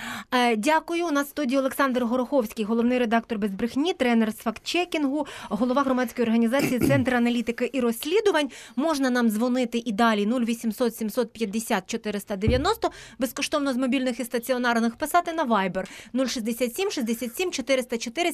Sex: female